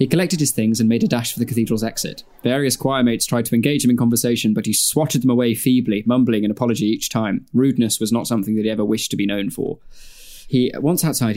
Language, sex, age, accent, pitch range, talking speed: English, male, 20-39, British, 115-145 Hz, 250 wpm